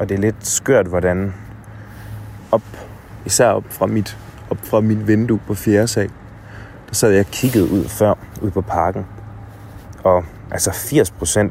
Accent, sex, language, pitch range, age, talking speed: native, male, Danish, 95-110 Hz, 20-39, 155 wpm